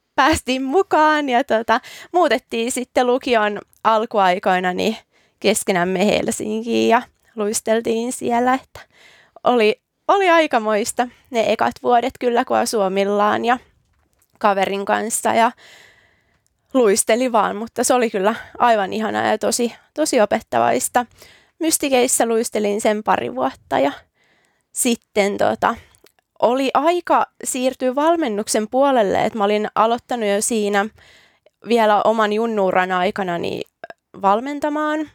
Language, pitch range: Finnish, 210-250 Hz